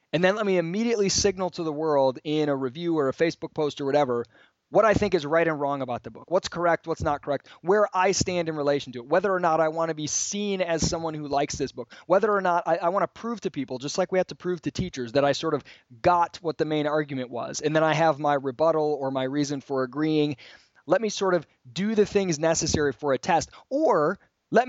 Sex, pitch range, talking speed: male, 145-205 Hz, 260 wpm